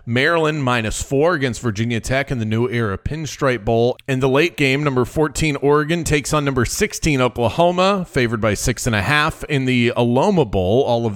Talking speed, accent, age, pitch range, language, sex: 195 wpm, American, 30-49, 120-150 Hz, English, male